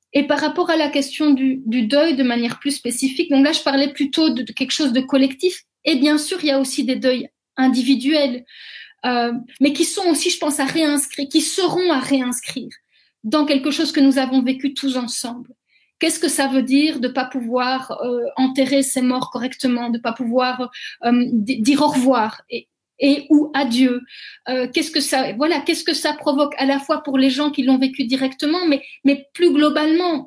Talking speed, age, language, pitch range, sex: 205 wpm, 30-49, French, 265-305 Hz, female